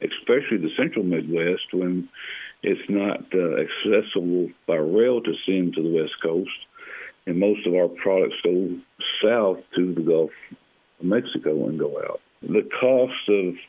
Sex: male